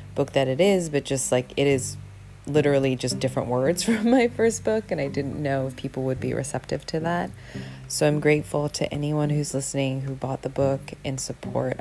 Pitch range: 130-150 Hz